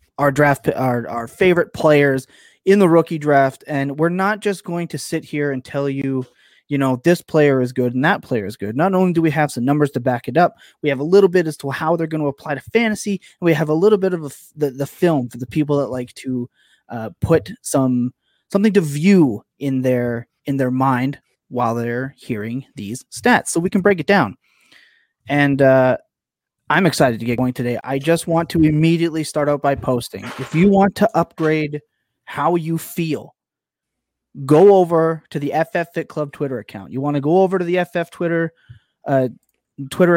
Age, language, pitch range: 20-39, English, 130-170 Hz